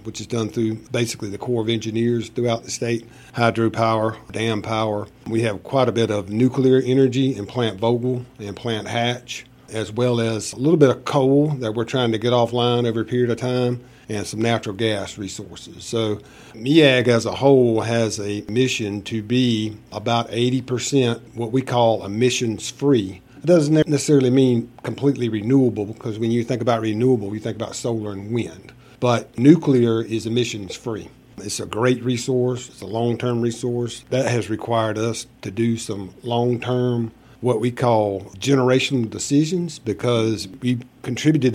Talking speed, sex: 165 wpm, male